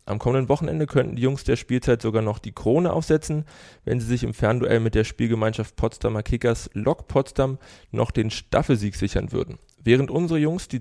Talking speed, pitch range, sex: 190 wpm, 105-135 Hz, male